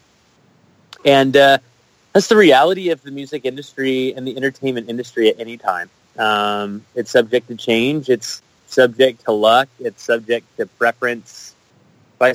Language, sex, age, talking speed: English, male, 30-49, 145 wpm